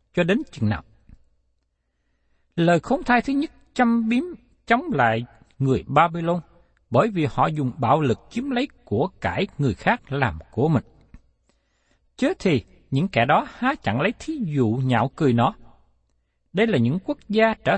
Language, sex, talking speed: Vietnamese, male, 165 wpm